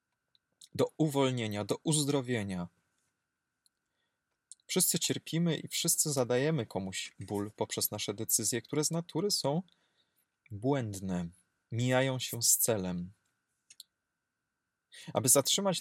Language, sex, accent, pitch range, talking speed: Polish, male, native, 85-135 Hz, 95 wpm